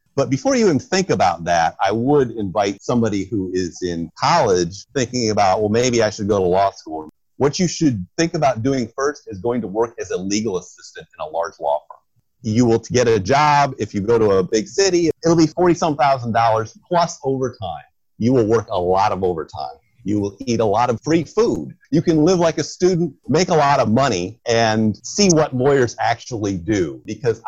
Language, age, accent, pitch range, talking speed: English, 40-59, American, 100-140 Hz, 210 wpm